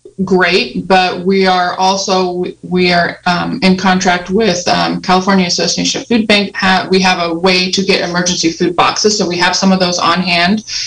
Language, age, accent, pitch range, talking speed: English, 20-39, American, 185-215 Hz, 180 wpm